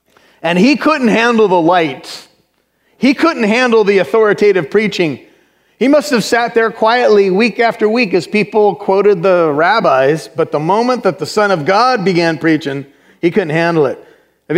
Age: 30-49